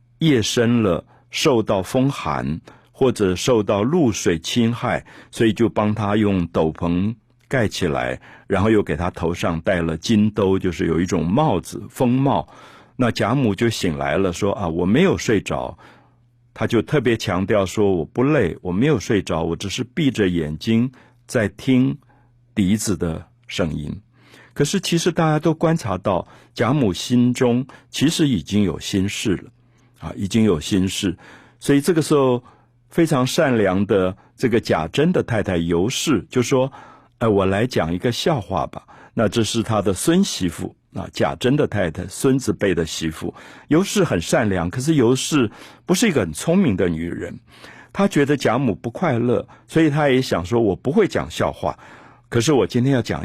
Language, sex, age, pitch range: Chinese, male, 50-69, 95-125 Hz